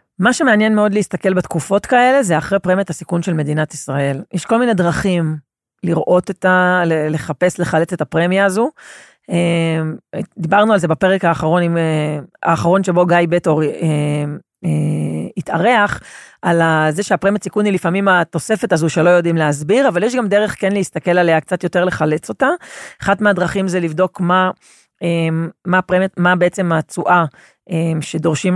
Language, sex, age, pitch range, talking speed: Hebrew, female, 30-49, 160-195 Hz, 150 wpm